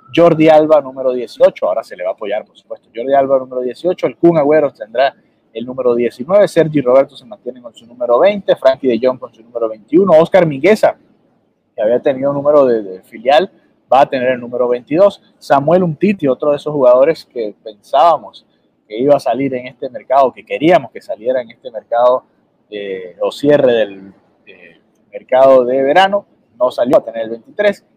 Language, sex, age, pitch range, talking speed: Spanish, male, 30-49, 125-185 Hz, 195 wpm